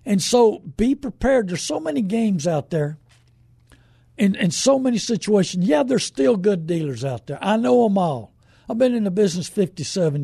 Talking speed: 190 wpm